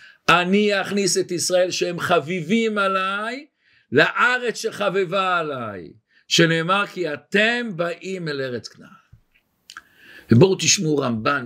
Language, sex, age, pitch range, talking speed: Hebrew, male, 50-69, 165-210 Hz, 105 wpm